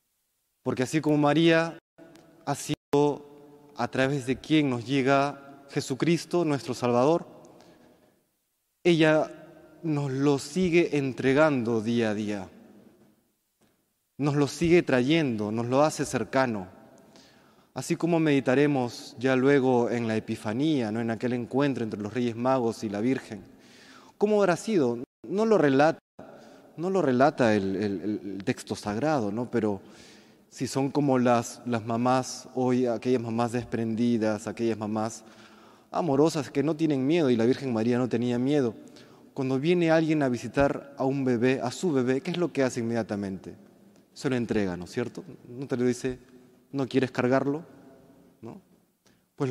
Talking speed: 145 wpm